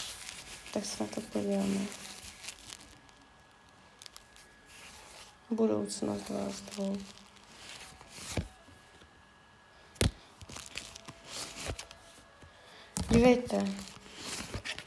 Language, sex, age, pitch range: Czech, female, 20-39, 200-245 Hz